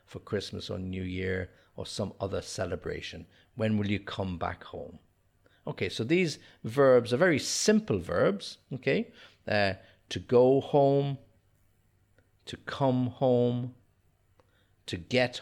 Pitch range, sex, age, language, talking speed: 95-115 Hz, male, 50-69, English, 130 wpm